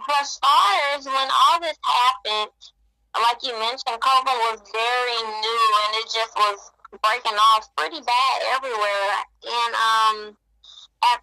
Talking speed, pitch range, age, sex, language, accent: 135 wpm, 220-280 Hz, 20-39, female, English, American